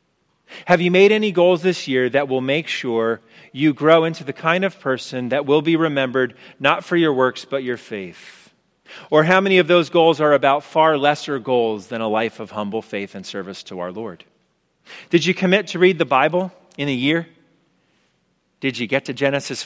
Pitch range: 130-175 Hz